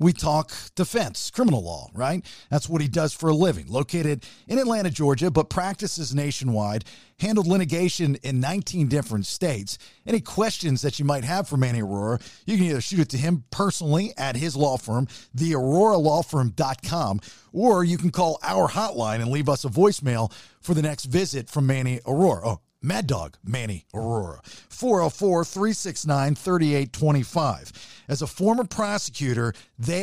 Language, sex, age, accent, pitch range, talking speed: English, male, 50-69, American, 125-175 Hz, 150 wpm